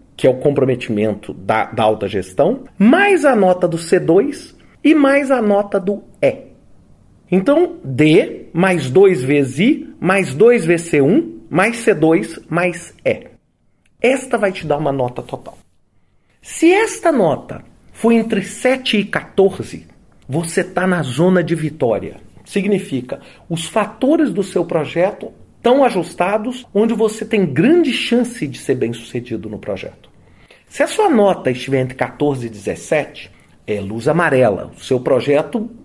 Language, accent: Portuguese, Brazilian